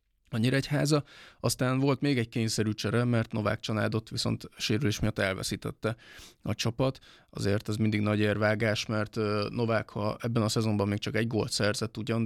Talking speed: 165 wpm